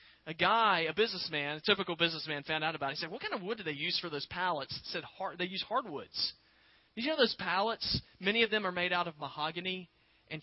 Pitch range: 130-175 Hz